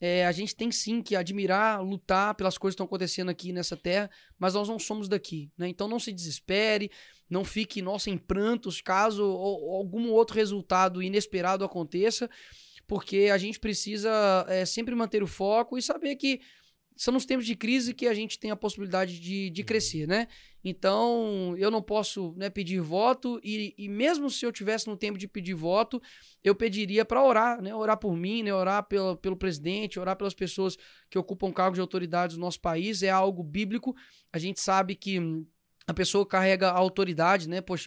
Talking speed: 190 wpm